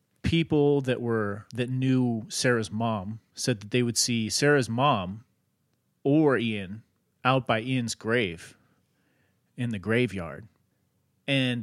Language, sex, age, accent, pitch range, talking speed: English, male, 30-49, American, 105-130 Hz, 125 wpm